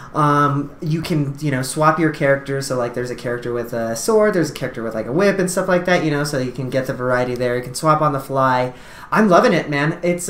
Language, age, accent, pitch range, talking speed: English, 30-49, American, 135-165 Hz, 275 wpm